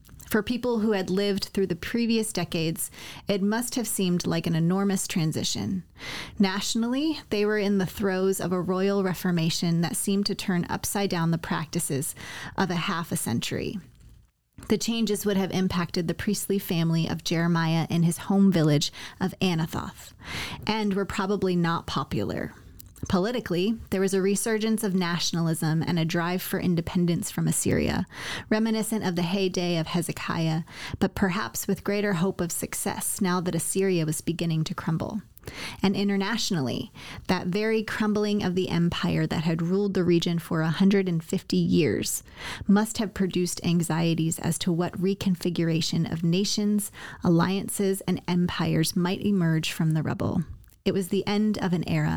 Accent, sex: American, female